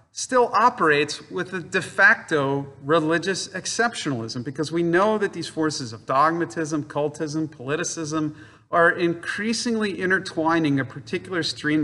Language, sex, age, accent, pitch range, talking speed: English, male, 40-59, American, 125-165 Hz, 120 wpm